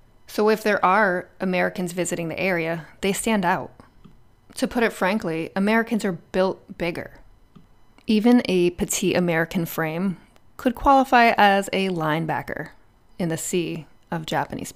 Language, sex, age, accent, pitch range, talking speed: English, female, 20-39, American, 165-205 Hz, 140 wpm